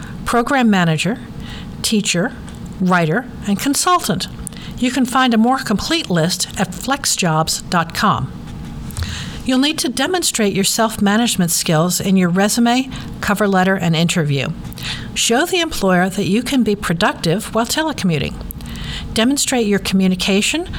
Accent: American